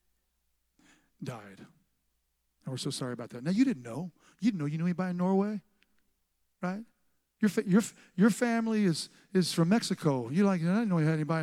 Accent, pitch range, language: American, 160-230 Hz, English